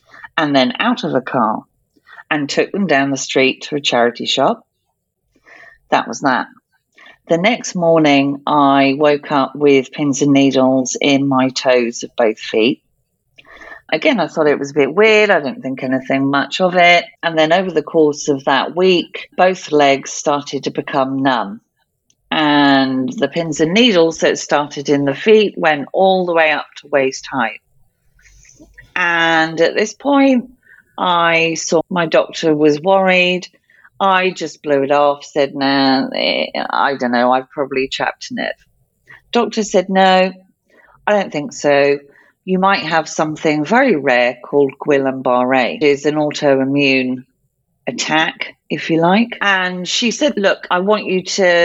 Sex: female